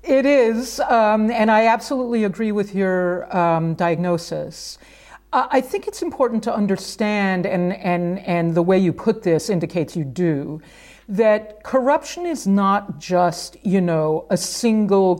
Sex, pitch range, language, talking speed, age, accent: female, 170-230 Hz, English, 150 wpm, 50-69, American